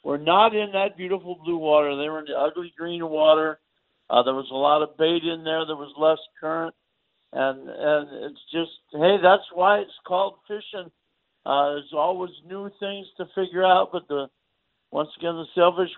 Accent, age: American, 50-69